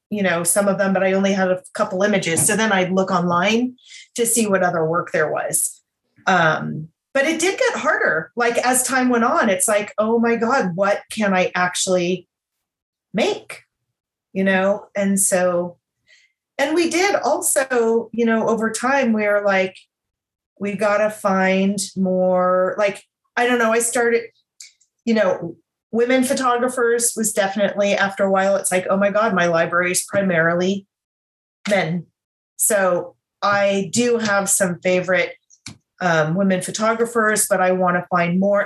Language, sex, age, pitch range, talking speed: English, female, 30-49, 180-220 Hz, 165 wpm